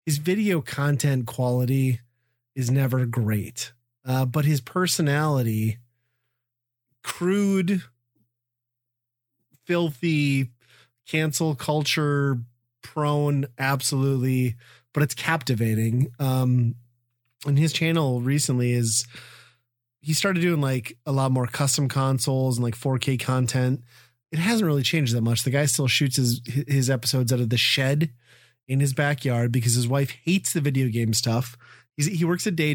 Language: English